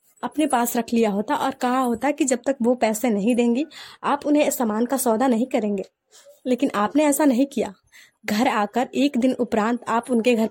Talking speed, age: 200 wpm, 20-39